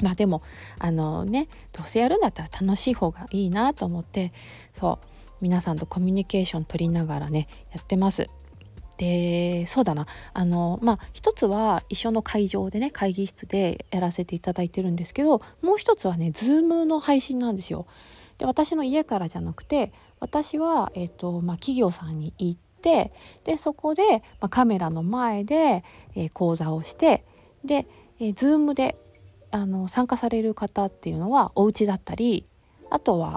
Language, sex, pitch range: Japanese, female, 175-260 Hz